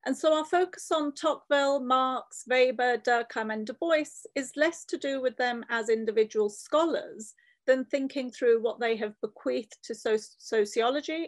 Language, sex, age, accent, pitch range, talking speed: English, female, 40-59, British, 230-310 Hz, 160 wpm